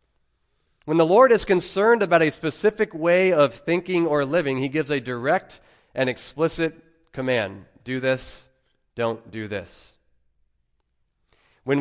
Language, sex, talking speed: English, male, 130 wpm